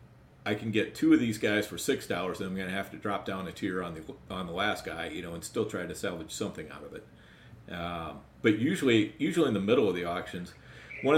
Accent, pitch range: American, 95-115 Hz